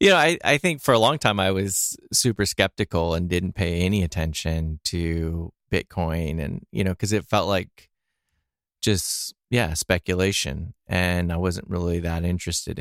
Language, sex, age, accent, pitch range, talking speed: English, male, 30-49, American, 85-105 Hz, 170 wpm